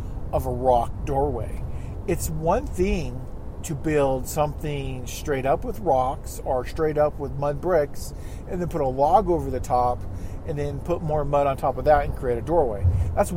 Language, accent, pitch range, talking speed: English, American, 110-145 Hz, 190 wpm